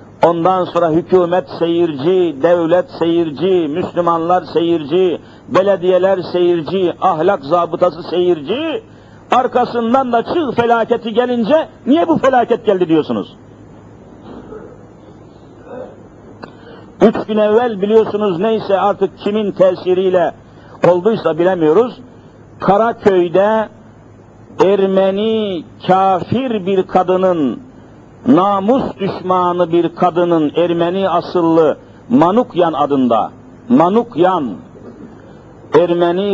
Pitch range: 175-215 Hz